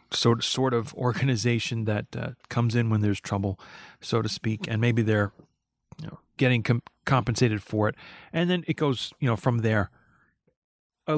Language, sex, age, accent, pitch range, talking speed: English, male, 40-59, American, 115-130 Hz, 175 wpm